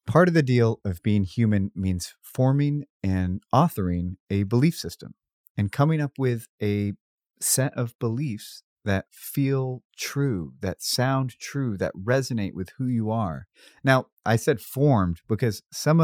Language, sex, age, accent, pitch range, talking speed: English, male, 30-49, American, 95-125 Hz, 150 wpm